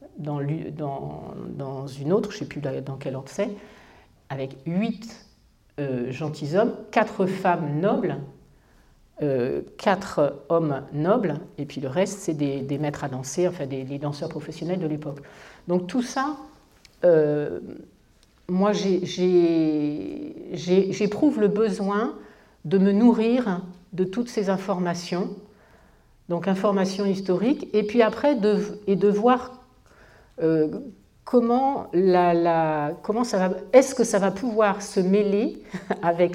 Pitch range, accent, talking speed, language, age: 155-210 Hz, French, 135 wpm, French, 50-69